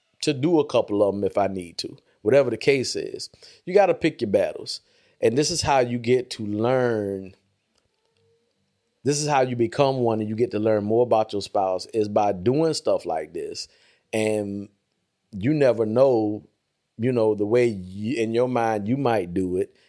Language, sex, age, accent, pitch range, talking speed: English, male, 30-49, American, 110-165 Hz, 195 wpm